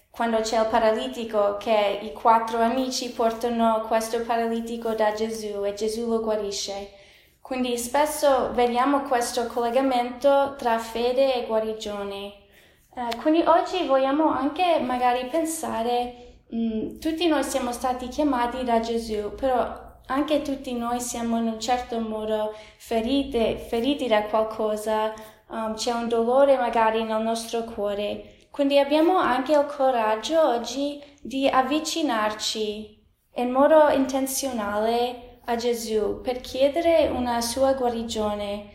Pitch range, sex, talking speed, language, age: 220-270 Hz, female, 120 wpm, Italian, 20-39